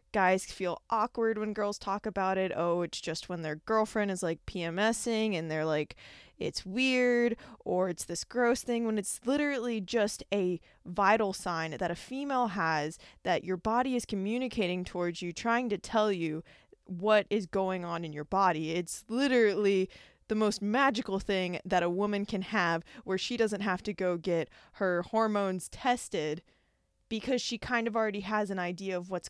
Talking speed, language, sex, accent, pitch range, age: 180 wpm, English, female, American, 180-220 Hz, 20-39